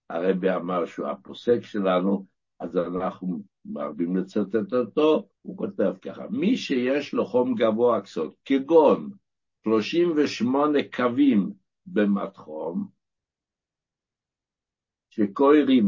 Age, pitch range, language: 60-79, 100-150 Hz, Hebrew